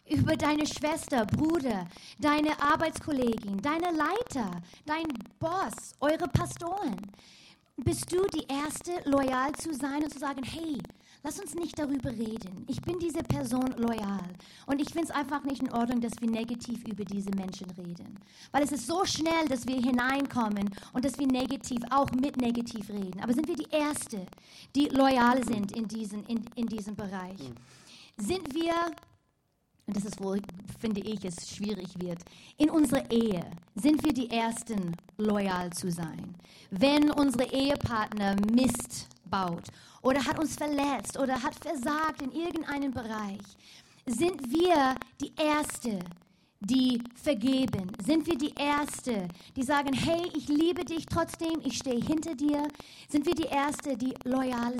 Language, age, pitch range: German, 20-39, 215-295 Hz